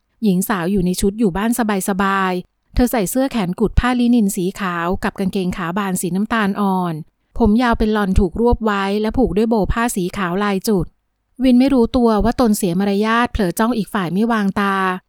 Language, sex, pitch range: Thai, female, 195-230 Hz